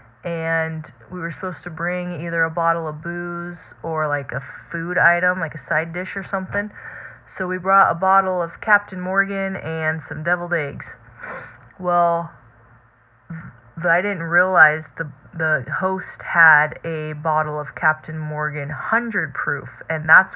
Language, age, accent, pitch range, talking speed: English, 20-39, American, 155-185 Hz, 155 wpm